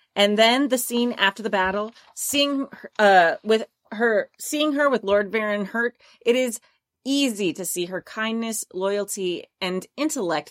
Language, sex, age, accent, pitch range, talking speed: English, female, 30-49, American, 180-245 Hz, 160 wpm